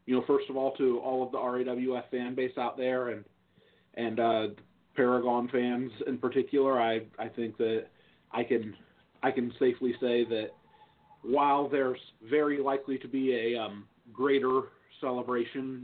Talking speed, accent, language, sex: 170 wpm, American, English, male